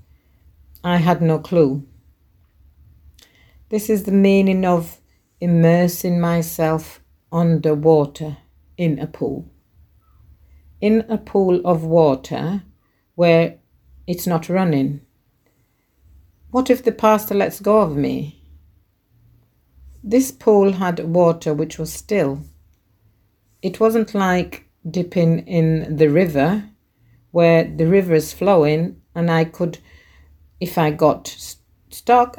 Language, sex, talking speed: English, female, 110 wpm